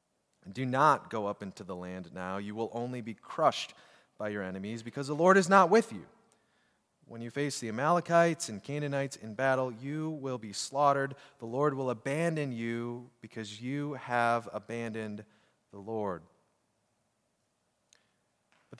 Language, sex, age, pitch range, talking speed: English, male, 30-49, 115-170 Hz, 155 wpm